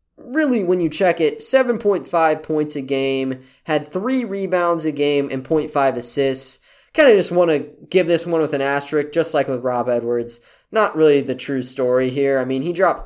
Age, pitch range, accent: 20-39, 135-185 Hz, American